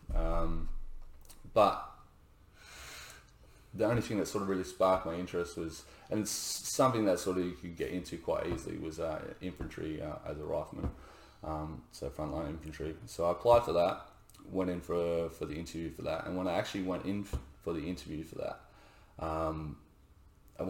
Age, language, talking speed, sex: 20-39, English, 185 wpm, male